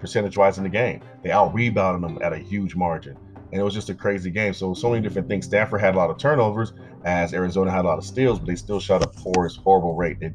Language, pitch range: English, 90-115 Hz